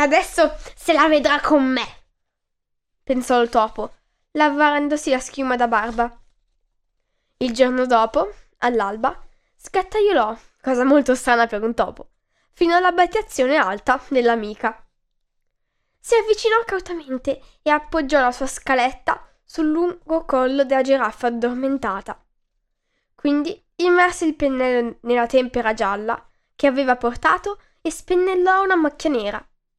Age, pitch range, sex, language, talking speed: 10-29, 250-345 Hz, female, Italian, 115 wpm